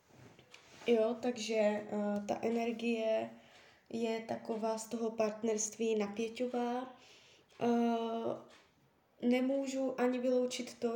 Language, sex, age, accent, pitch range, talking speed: Czech, female, 20-39, native, 220-245 Hz, 90 wpm